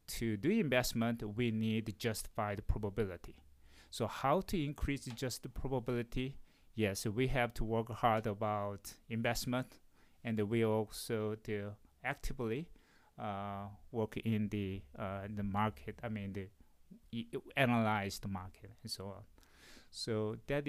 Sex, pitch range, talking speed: male, 105-130 Hz, 135 wpm